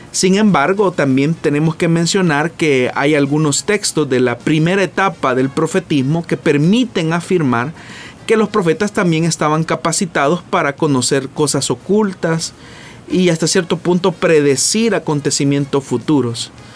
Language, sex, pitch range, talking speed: Spanish, male, 135-170 Hz, 130 wpm